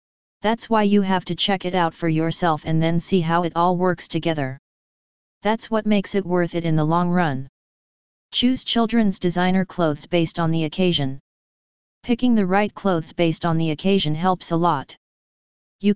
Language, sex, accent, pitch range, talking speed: English, female, American, 165-190 Hz, 180 wpm